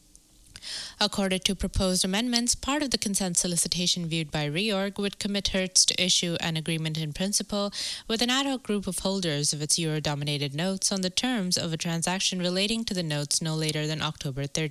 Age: 20-39